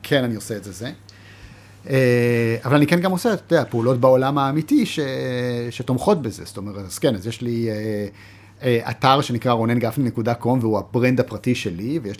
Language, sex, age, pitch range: Hebrew, male, 30-49, 105-130 Hz